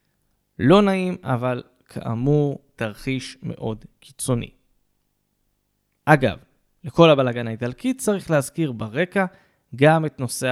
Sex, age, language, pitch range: male, 20-39, Hebrew, 120-160 Hz